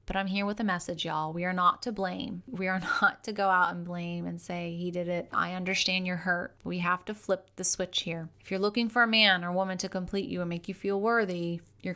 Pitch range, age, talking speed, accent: 175-200 Hz, 30-49, 265 wpm, American